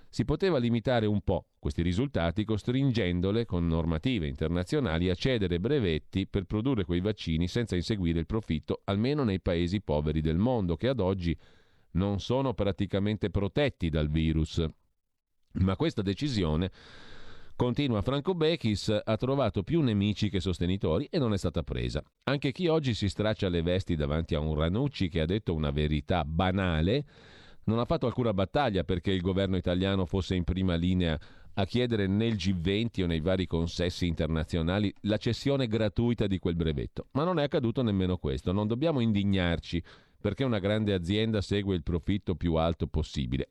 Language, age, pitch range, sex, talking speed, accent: Italian, 40-59, 85-115 Hz, male, 165 wpm, native